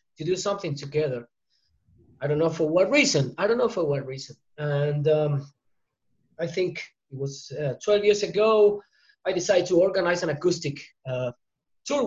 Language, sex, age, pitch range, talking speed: English, male, 20-39, 145-195 Hz, 170 wpm